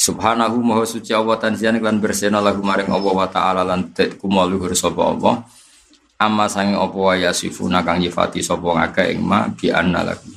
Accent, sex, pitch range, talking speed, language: native, male, 90-105 Hz, 160 wpm, Indonesian